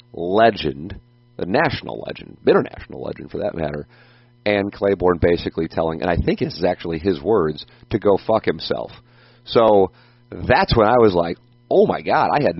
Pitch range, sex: 80-115 Hz, male